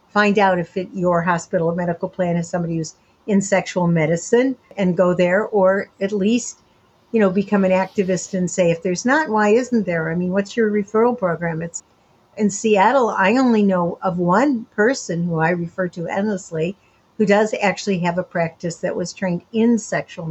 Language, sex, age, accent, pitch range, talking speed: English, female, 60-79, American, 180-215 Hz, 190 wpm